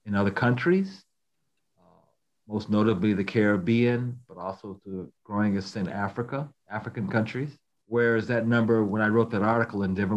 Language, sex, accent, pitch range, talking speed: English, male, American, 100-120 Hz, 160 wpm